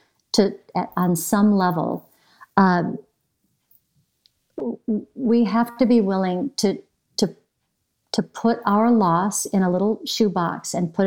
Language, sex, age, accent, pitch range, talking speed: English, female, 50-69, American, 185-235 Hz, 125 wpm